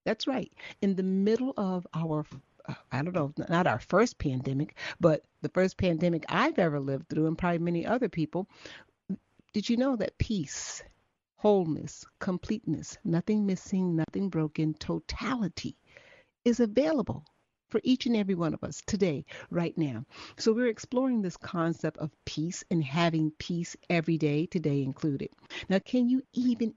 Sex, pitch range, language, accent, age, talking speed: female, 155-210 Hz, English, American, 60-79, 155 wpm